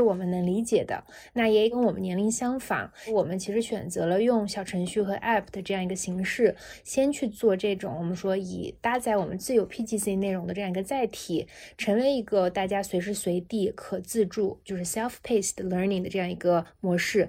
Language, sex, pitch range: Chinese, female, 185-230 Hz